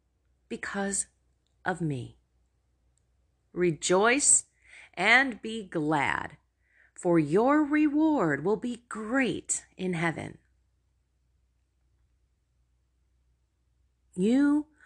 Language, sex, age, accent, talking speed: English, female, 30-49, American, 65 wpm